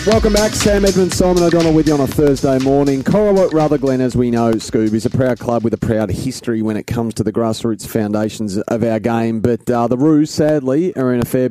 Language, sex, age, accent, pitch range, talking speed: English, male, 30-49, Australian, 115-145 Hz, 235 wpm